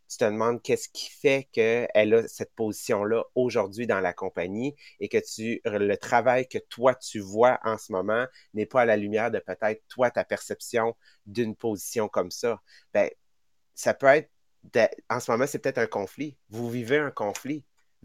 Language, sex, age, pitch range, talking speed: English, male, 30-49, 110-145 Hz, 185 wpm